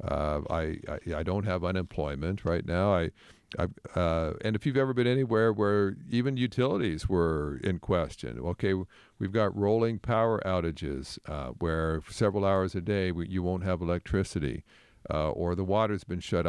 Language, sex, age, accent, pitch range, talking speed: English, male, 50-69, American, 80-105 Hz, 180 wpm